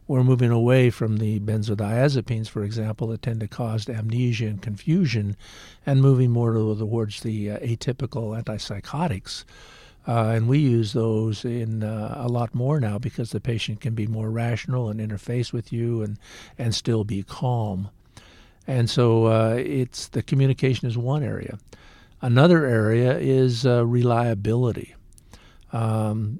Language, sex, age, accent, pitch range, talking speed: English, male, 50-69, American, 105-120 Hz, 150 wpm